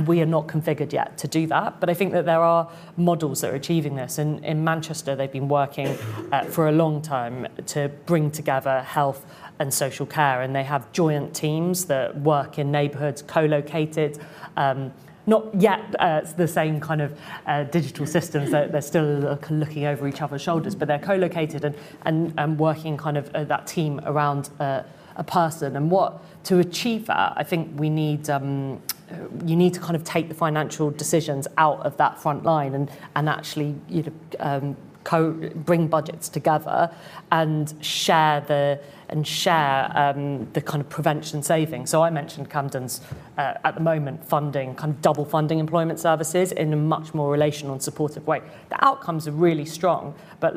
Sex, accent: female, British